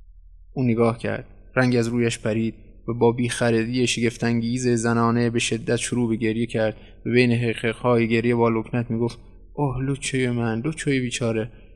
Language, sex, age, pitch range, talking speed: Persian, male, 20-39, 115-145 Hz, 155 wpm